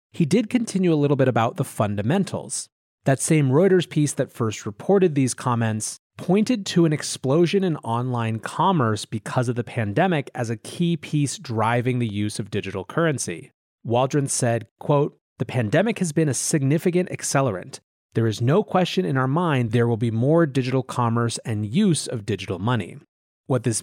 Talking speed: 175 wpm